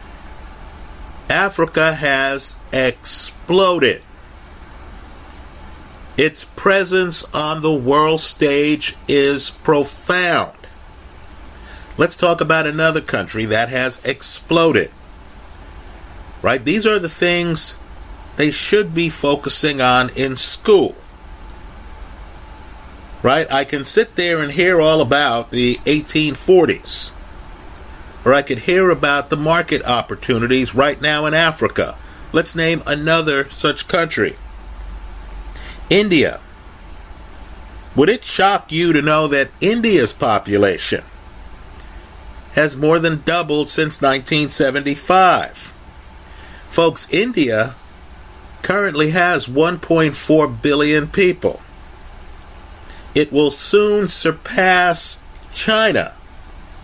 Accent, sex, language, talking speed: American, male, English, 90 wpm